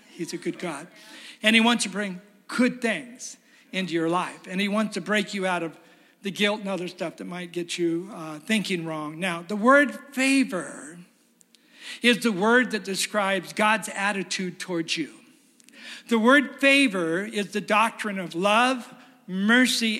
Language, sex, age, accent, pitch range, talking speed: English, male, 50-69, American, 190-240 Hz, 170 wpm